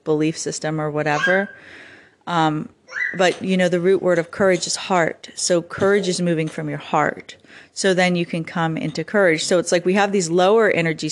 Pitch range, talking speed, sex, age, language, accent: 160-195 Hz, 200 wpm, female, 30-49, English, American